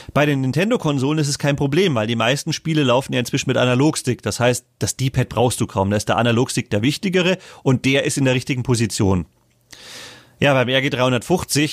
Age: 30-49